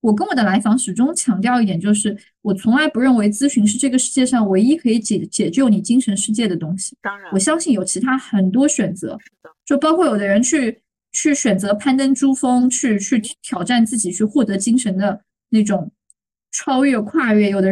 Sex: female